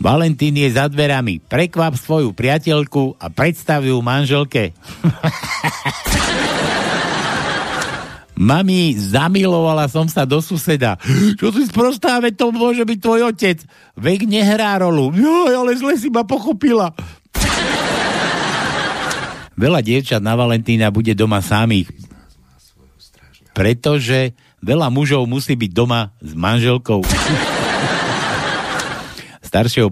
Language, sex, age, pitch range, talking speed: Slovak, male, 60-79, 115-165 Hz, 100 wpm